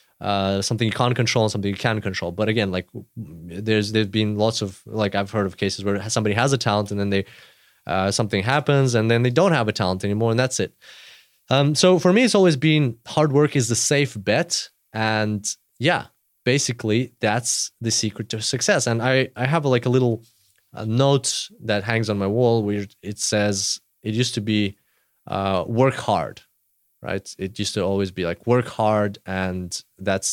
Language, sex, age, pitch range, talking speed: English, male, 20-39, 100-120 Hz, 200 wpm